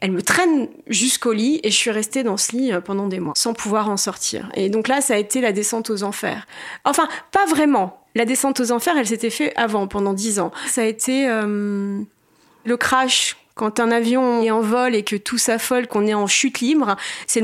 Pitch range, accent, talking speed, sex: 205-260 Hz, French, 225 wpm, female